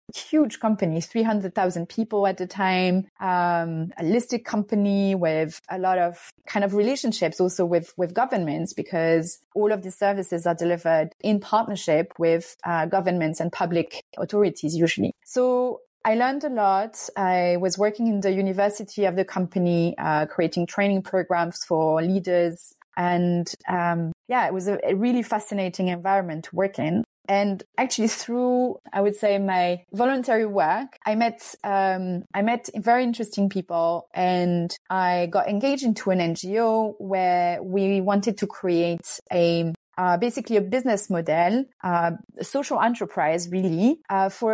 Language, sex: English, female